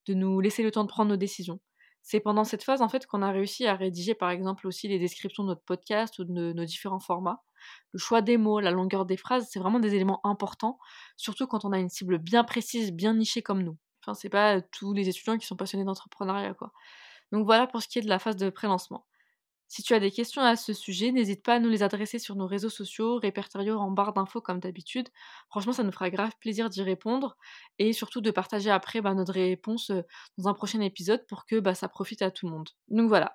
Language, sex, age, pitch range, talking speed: French, female, 20-39, 190-225 Hz, 245 wpm